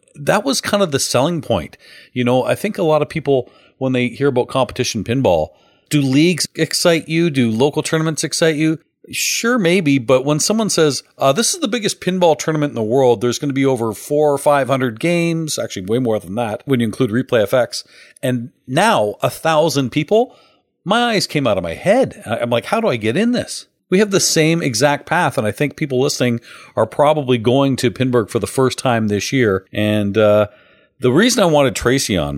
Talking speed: 215 wpm